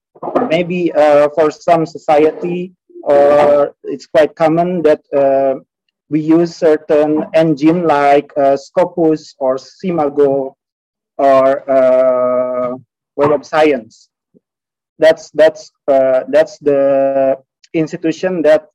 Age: 30-49